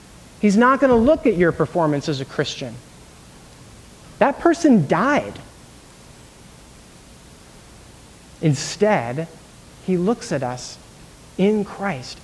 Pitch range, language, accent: 160-225 Hz, English, American